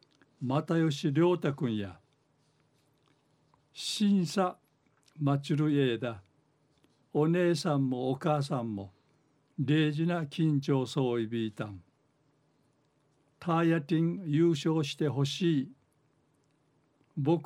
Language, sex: Japanese, male